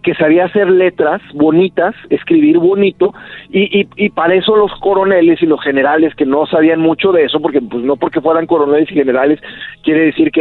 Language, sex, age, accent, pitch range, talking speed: Spanish, male, 50-69, Mexican, 155-205 Hz, 195 wpm